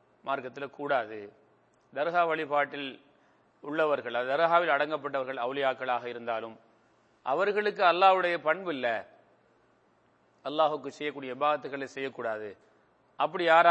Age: 30-49